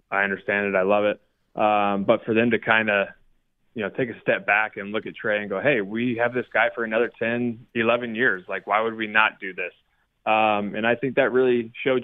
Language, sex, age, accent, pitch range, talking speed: English, male, 20-39, American, 100-115 Hz, 245 wpm